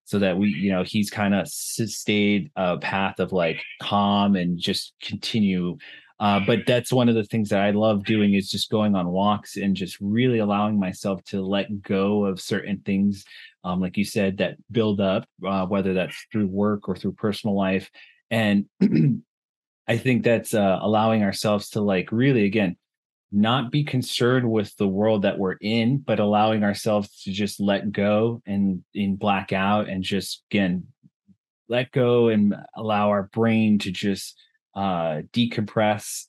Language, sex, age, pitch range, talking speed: English, male, 30-49, 100-110 Hz, 170 wpm